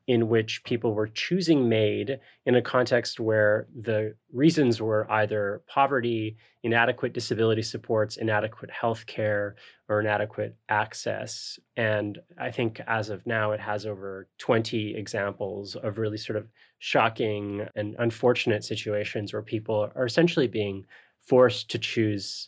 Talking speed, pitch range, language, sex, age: 135 wpm, 105-125 Hz, English, male, 20-39